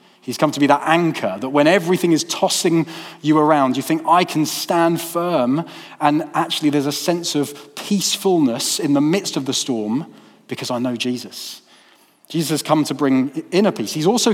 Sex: male